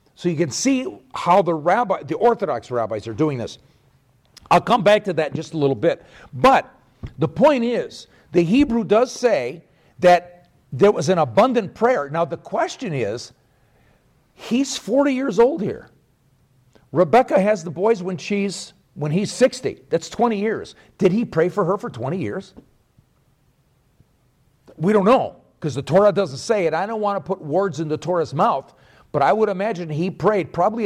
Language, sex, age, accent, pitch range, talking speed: English, male, 50-69, American, 135-210 Hz, 180 wpm